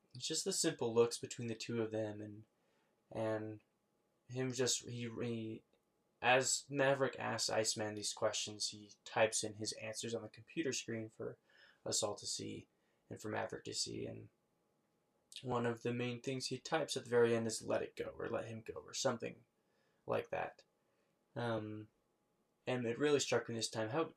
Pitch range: 110-130 Hz